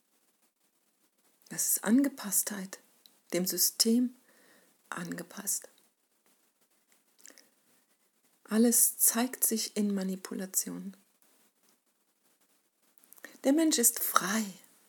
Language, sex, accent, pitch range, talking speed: German, female, German, 195-245 Hz, 60 wpm